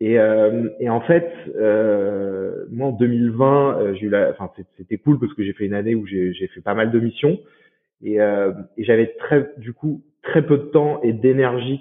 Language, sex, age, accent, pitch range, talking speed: French, male, 20-39, French, 110-140 Hz, 215 wpm